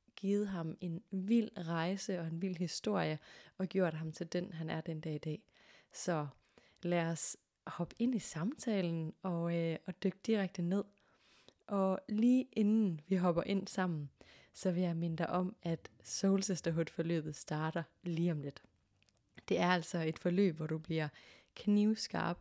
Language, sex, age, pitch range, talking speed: Danish, female, 20-39, 165-200 Hz, 165 wpm